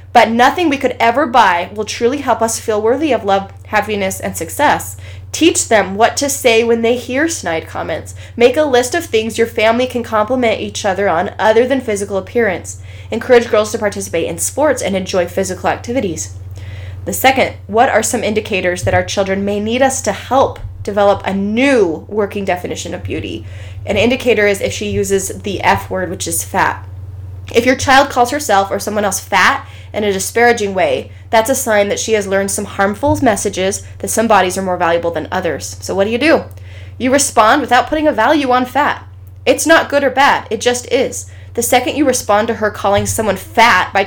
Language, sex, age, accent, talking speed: English, female, 20-39, American, 200 wpm